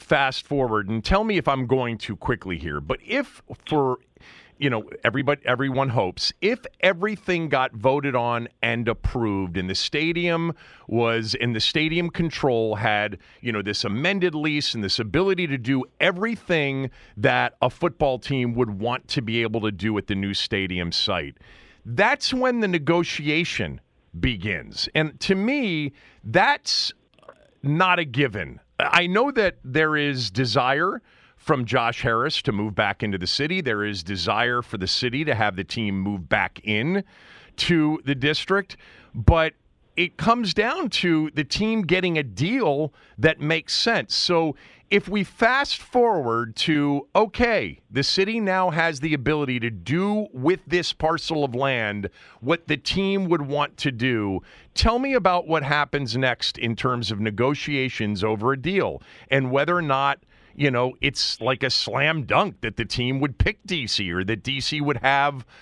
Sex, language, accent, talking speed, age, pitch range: male, English, American, 165 wpm, 40-59, 115-165 Hz